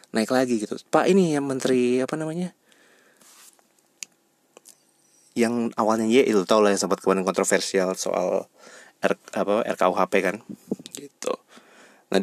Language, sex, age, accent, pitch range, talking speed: Indonesian, male, 30-49, native, 100-135 Hz, 120 wpm